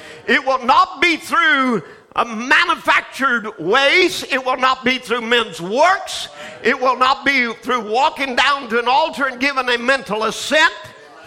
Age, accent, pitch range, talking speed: 50-69, American, 255-320 Hz, 160 wpm